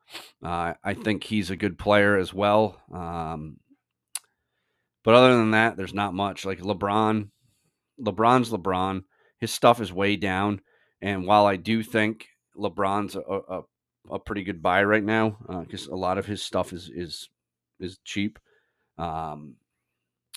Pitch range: 90-110 Hz